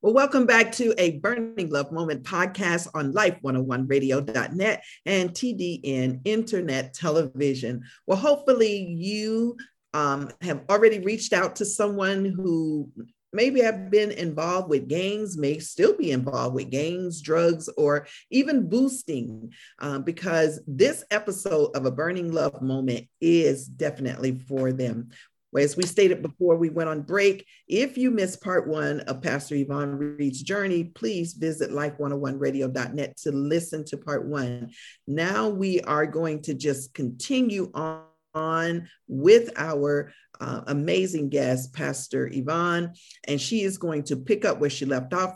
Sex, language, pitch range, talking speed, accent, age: female, English, 140-195 Hz, 145 wpm, American, 40-59